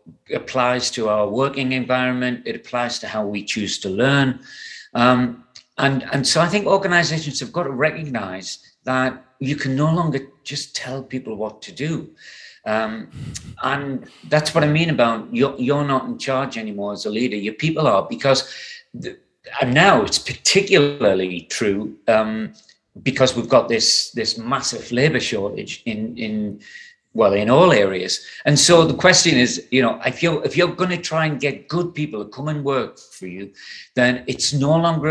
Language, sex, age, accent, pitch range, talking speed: English, male, 40-59, British, 120-150 Hz, 180 wpm